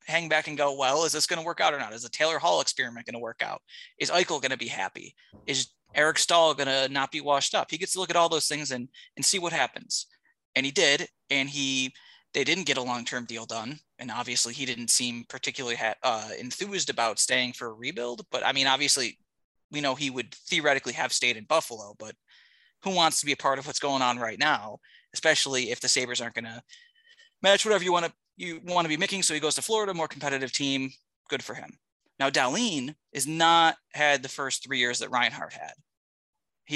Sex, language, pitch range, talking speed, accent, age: male, English, 120-155 Hz, 230 wpm, American, 20-39